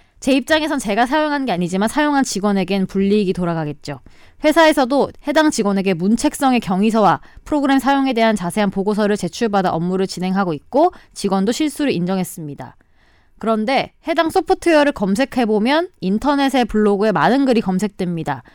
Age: 20-39